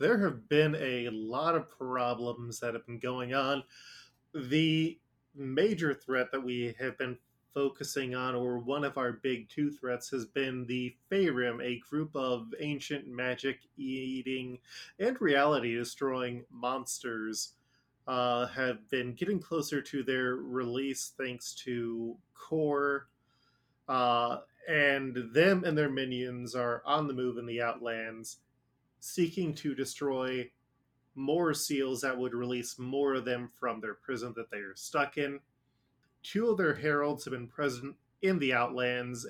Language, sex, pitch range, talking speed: English, male, 125-145 Hz, 140 wpm